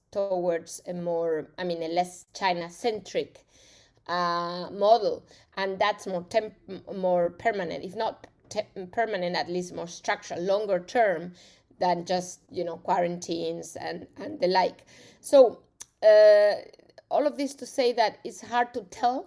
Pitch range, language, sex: 175-210 Hz, English, female